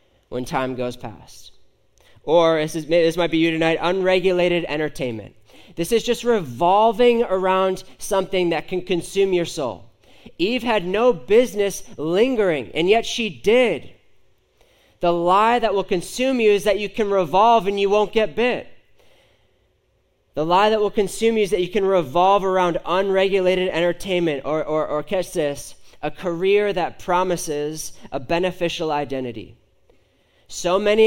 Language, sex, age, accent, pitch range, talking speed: English, male, 30-49, American, 170-200 Hz, 150 wpm